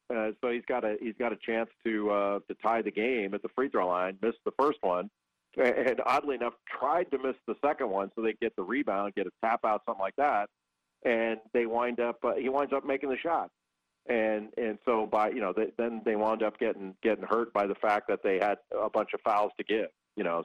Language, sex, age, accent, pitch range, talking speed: English, male, 40-59, American, 90-115 Hz, 245 wpm